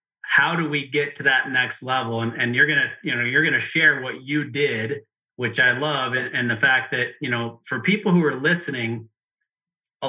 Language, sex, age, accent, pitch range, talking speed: English, male, 30-49, American, 120-145 Hz, 225 wpm